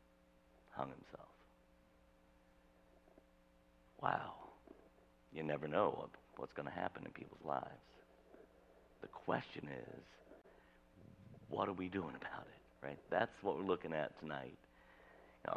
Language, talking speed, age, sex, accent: English, 115 wpm, 60-79, male, American